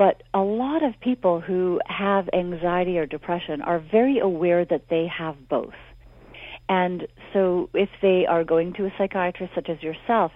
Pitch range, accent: 160-185 Hz, American